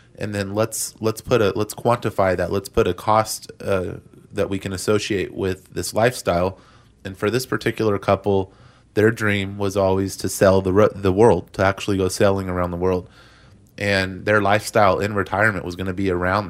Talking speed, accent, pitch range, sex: 195 wpm, American, 95-110 Hz, male